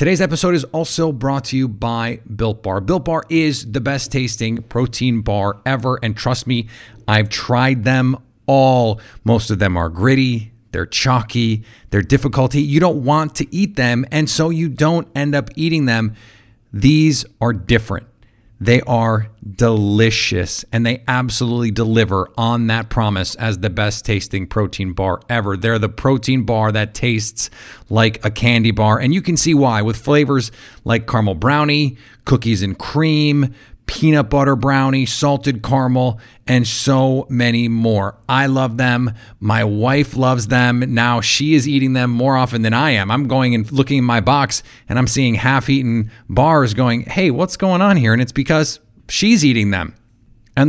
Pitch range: 110-135 Hz